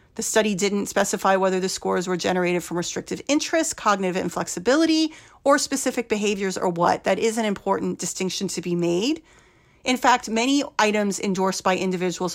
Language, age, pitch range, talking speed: English, 40-59, 185-245 Hz, 165 wpm